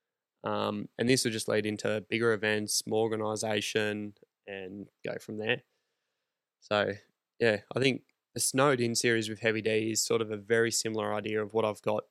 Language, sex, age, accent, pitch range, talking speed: English, male, 20-39, Australian, 110-115 Hz, 180 wpm